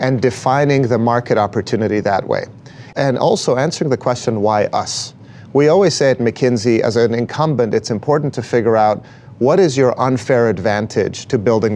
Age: 30-49